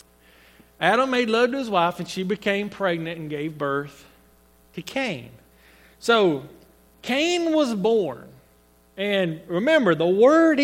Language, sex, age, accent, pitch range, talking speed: English, male, 40-59, American, 165-250 Hz, 130 wpm